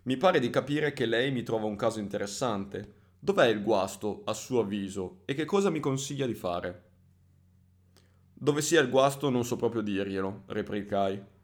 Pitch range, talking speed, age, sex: 95-125 Hz, 175 wpm, 20-39, male